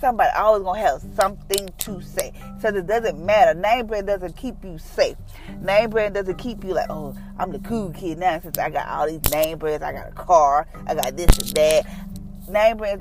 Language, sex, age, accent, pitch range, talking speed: English, female, 30-49, American, 155-195 Hz, 220 wpm